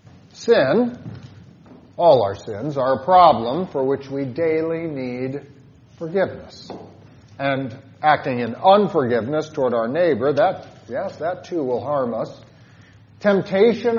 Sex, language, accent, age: male, English, American, 50-69